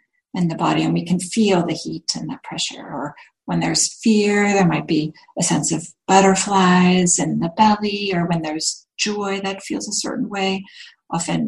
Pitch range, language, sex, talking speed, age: 175-230 Hz, English, female, 190 wpm, 40-59